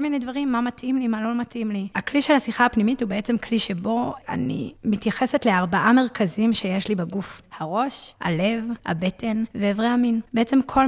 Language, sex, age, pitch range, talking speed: Hebrew, female, 20-39, 210-255 Hz, 170 wpm